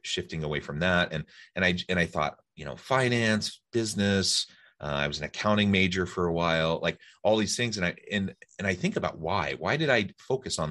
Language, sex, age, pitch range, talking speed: English, male, 30-49, 80-100 Hz, 225 wpm